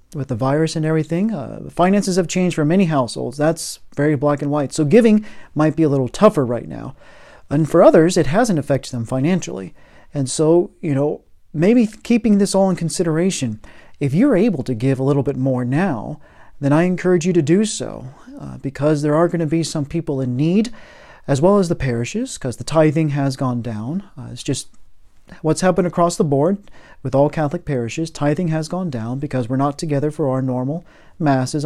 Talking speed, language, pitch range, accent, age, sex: 205 wpm, English, 135-180 Hz, American, 40-59, male